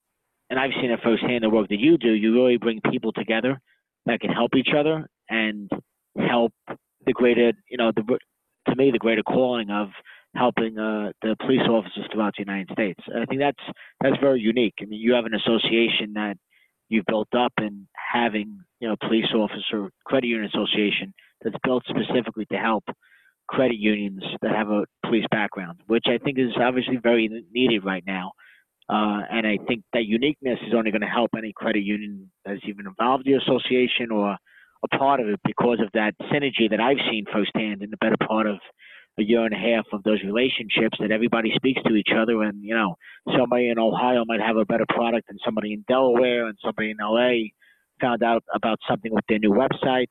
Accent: American